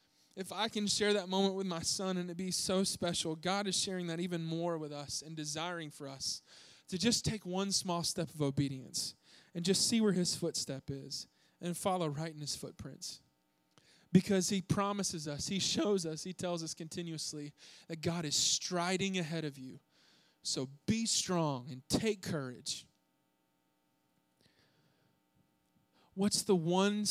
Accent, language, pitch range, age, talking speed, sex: American, English, 145-185 Hz, 20-39, 165 wpm, male